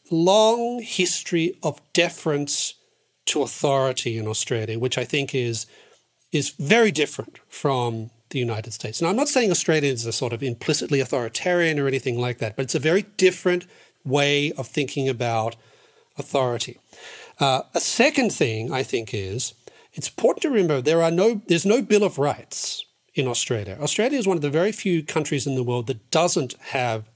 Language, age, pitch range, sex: English, 40-59, 125-170 Hz, male